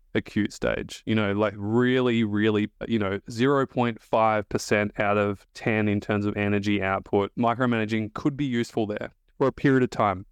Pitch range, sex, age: 105-130 Hz, male, 20-39